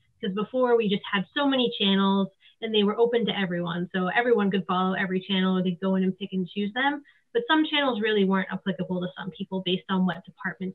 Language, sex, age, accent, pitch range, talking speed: English, female, 20-39, American, 190-230 Hz, 235 wpm